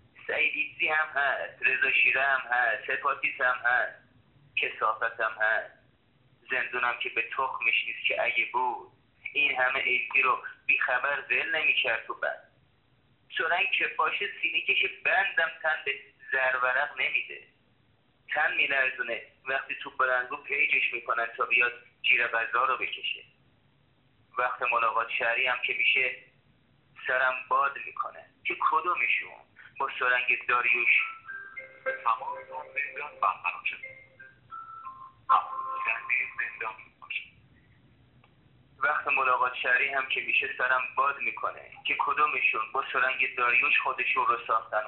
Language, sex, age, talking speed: Persian, male, 30-49, 115 wpm